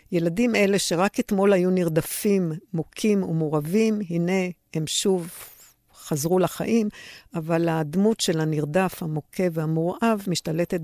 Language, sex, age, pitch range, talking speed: Hebrew, female, 60-79, 160-200 Hz, 110 wpm